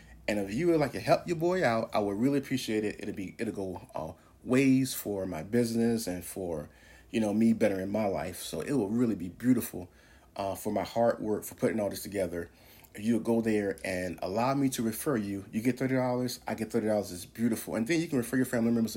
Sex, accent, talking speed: male, American, 235 wpm